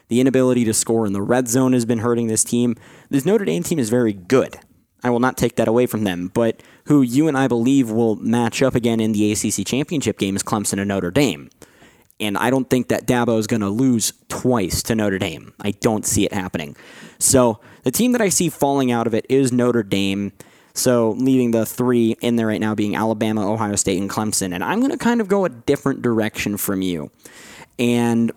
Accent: American